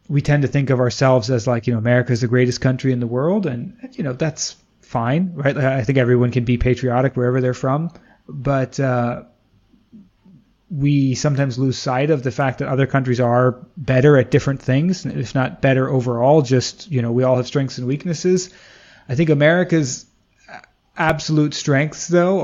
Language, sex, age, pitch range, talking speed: English, male, 30-49, 125-150 Hz, 185 wpm